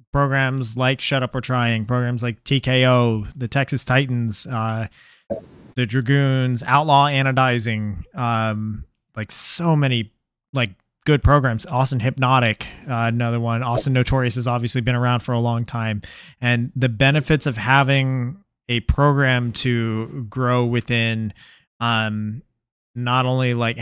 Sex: male